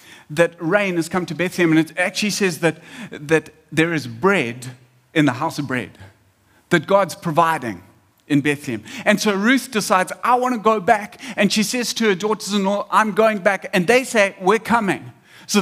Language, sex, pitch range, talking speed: English, male, 160-205 Hz, 190 wpm